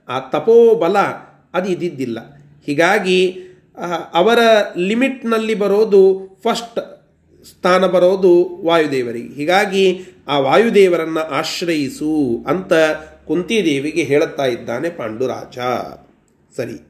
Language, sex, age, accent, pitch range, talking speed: Kannada, male, 30-49, native, 155-210 Hz, 80 wpm